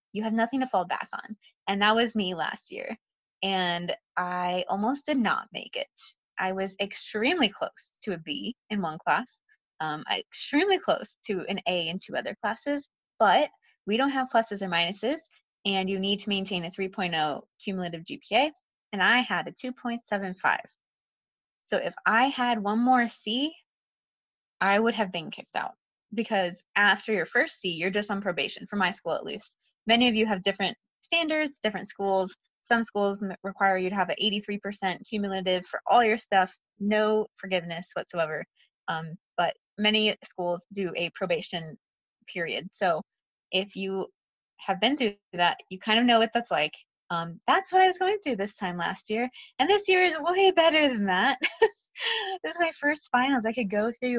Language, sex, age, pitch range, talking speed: English, female, 20-39, 185-245 Hz, 180 wpm